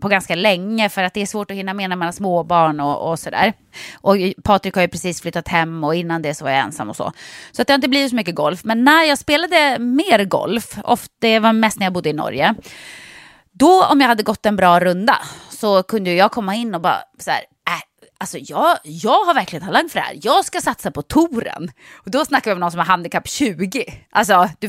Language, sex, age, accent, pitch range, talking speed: English, female, 20-39, Swedish, 190-285 Hz, 240 wpm